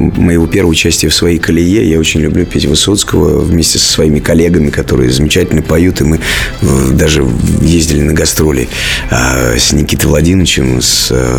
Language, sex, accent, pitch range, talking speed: Russian, male, native, 75-95 Hz, 150 wpm